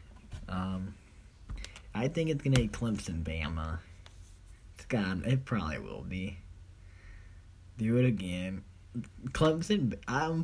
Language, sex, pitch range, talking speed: English, male, 95-135 Hz, 110 wpm